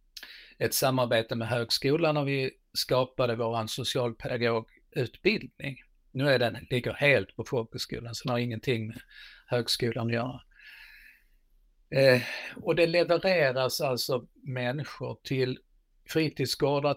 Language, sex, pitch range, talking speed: Swedish, male, 120-150 Hz, 115 wpm